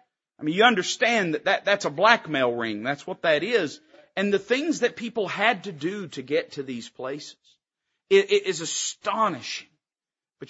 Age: 40-59